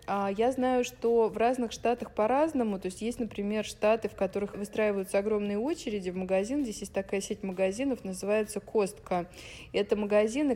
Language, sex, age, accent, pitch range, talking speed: Russian, female, 20-39, native, 190-225 Hz, 160 wpm